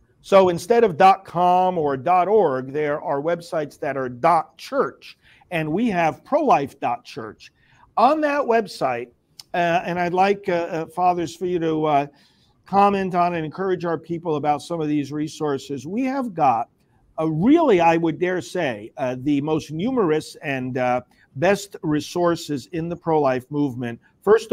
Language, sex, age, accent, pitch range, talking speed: English, male, 50-69, American, 145-185 Hz, 155 wpm